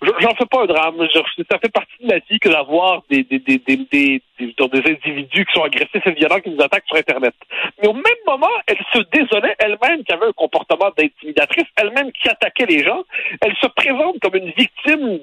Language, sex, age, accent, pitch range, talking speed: French, male, 50-69, French, 170-275 Hz, 215 wpm